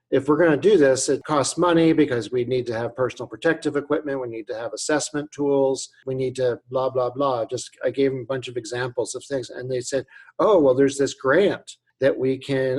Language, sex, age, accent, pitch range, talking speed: English, male, 50-69, American, 130-160 Hz, 230 wpm